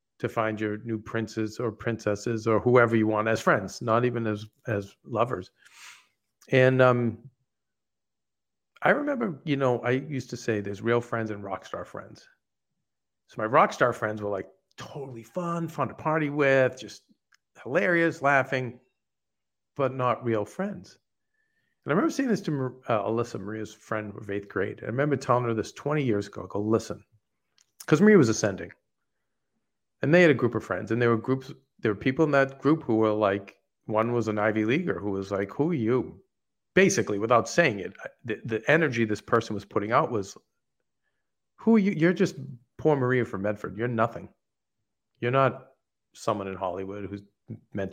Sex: male